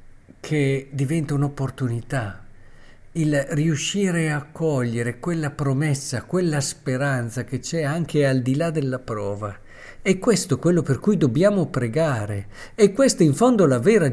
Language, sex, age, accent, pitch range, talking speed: Italian, male, 50-69, native, 120-160 Hz, 135 wpm